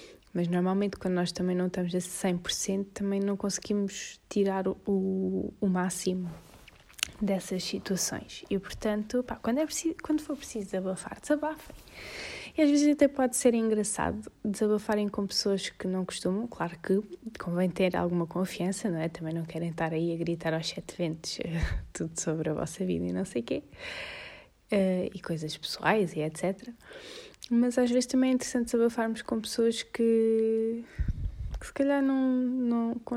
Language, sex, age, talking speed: Portuguese, female, 20-39, 165 wpm